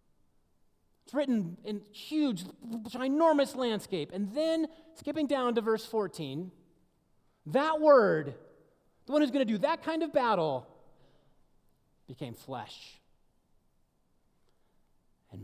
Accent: American